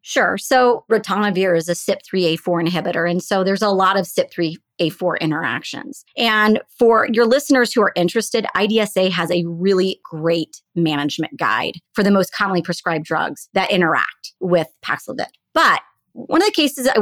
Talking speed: 160 wpm